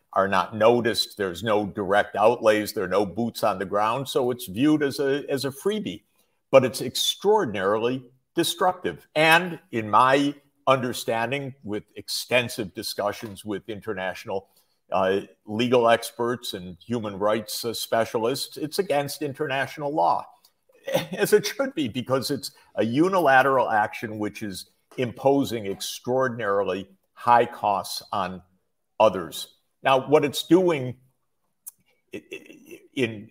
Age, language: 50-69, English